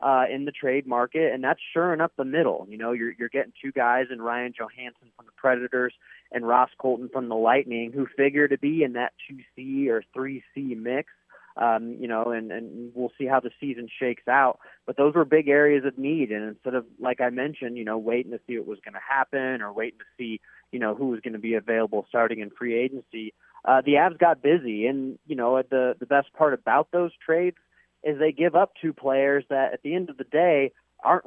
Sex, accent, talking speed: male, American, 230 wpm